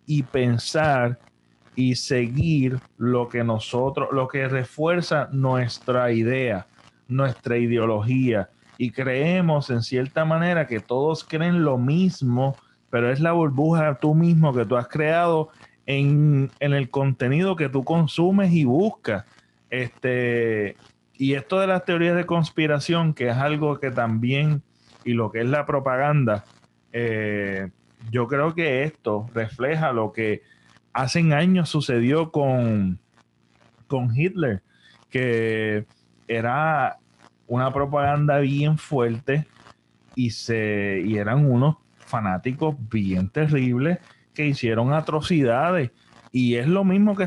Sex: male